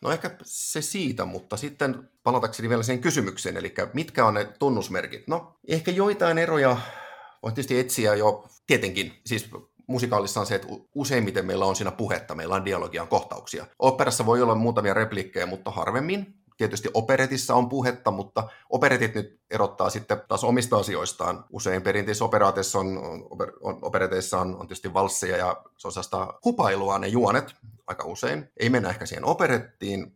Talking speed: 155 wpm